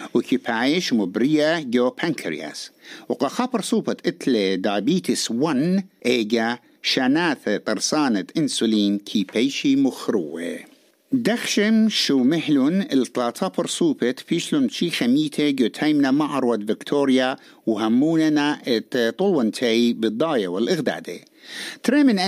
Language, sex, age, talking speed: English, male, 60-79, 95 wpm